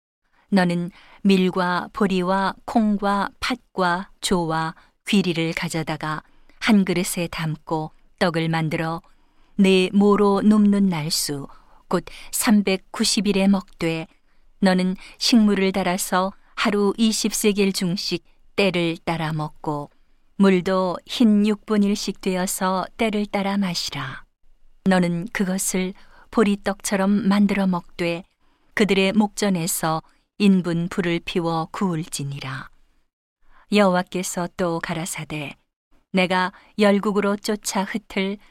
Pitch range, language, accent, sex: 175-205 Hz, Korean, native, female